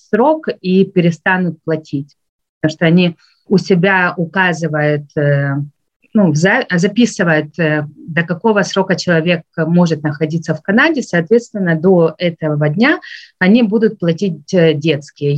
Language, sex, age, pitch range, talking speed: Russian, female, 30-49, 155-195 Hz, 110 wpm